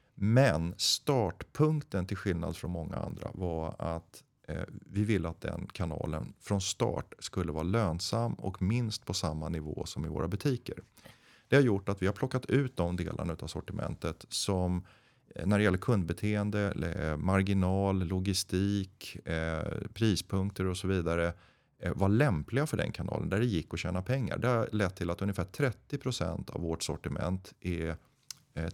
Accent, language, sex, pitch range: native, Swedish, male, 85-110 Hz